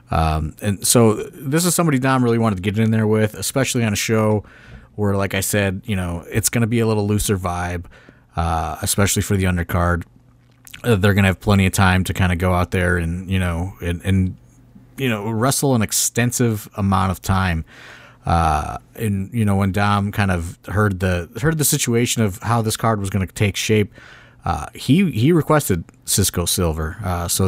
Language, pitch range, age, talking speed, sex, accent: English, 95-115 Hz, 30-49, 205 wpm, male, American